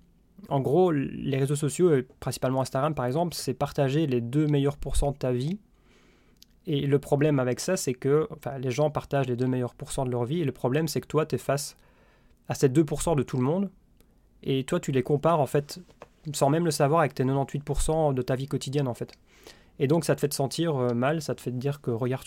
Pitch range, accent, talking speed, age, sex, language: 125-150 Hz, French, 240 wpm, 20-39, male, French